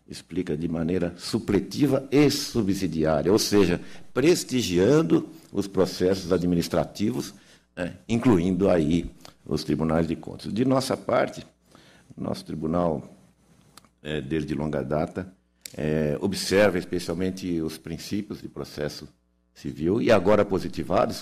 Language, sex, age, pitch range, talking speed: Portuguese, male, 60-79, 80-100 Hz, 110 wpm